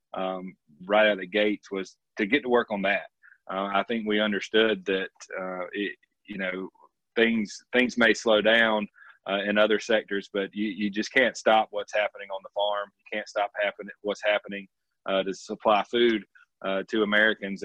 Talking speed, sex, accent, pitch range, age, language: 190 wpm, male, American, 100-110 Hz, 30-49, English